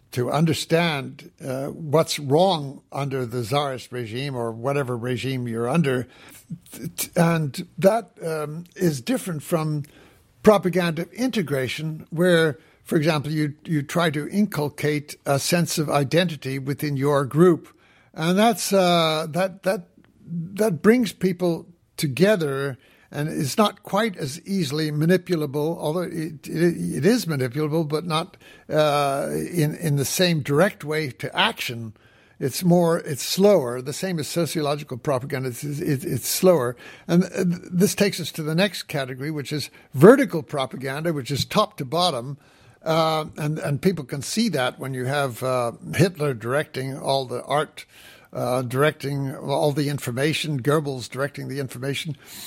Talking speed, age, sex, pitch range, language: 145 wpm, 60-79, male, 140-175 Hz, English